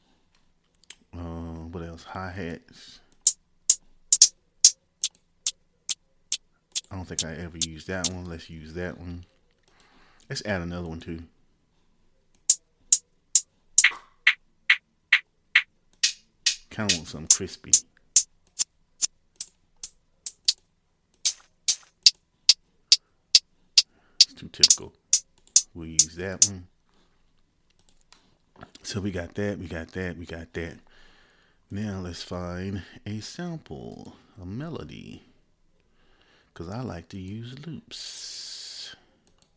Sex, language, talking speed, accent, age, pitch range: male, English, 85 wpm, American, 30-49, 85-105 Hz